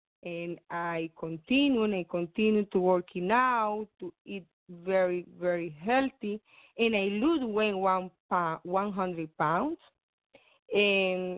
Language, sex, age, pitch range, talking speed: English, female, 20-39, 175-215 Hz, 120 wpm